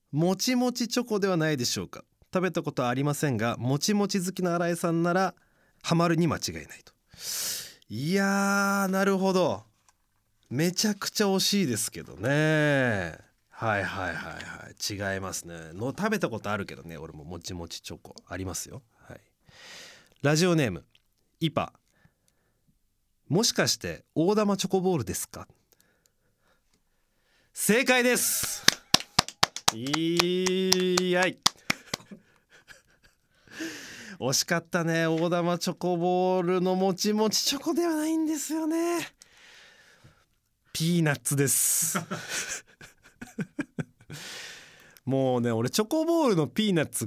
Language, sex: Japanese, male